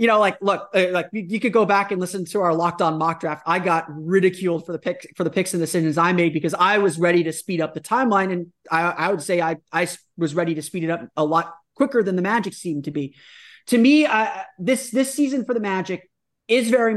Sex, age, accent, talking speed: male, 30-49, American, 255 wpm